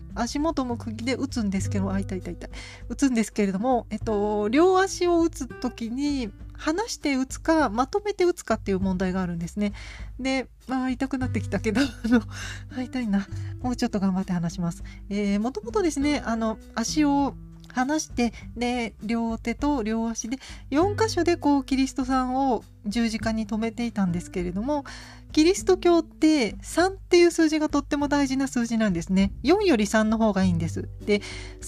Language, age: Japanese, 40-59